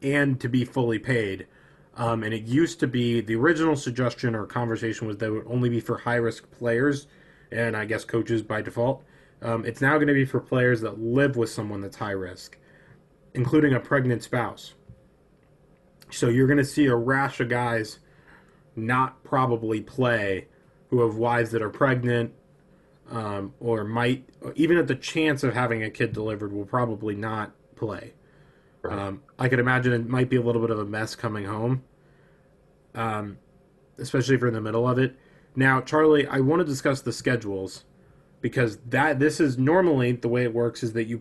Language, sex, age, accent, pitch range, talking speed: English, male, 20-39, American, 115-135 Hz, 185 wpm